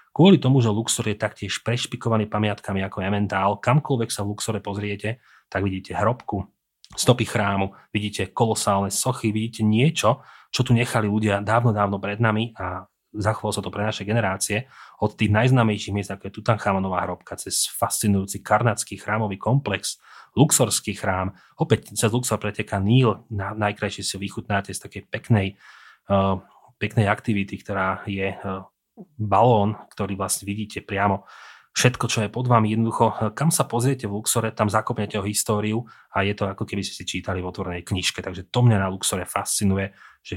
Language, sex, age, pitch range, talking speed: Slovak, male, 30-49, 100-115 Hz, 165 wpm